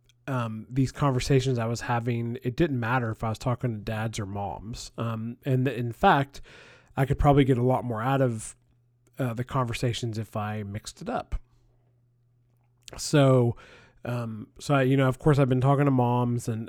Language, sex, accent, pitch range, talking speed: English, male, American, 115-135 Hz, 185 wpm